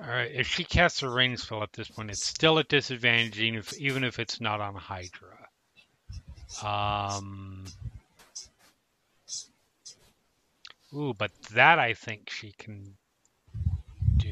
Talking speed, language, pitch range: 130 wpm, English, 105-145 Hz